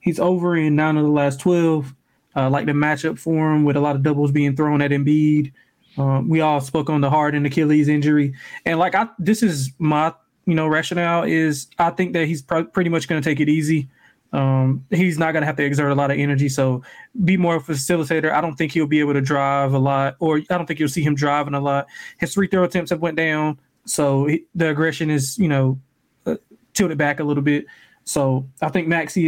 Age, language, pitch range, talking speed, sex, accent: 20-39, English, 140-170 Hz, 240 wpm, male, American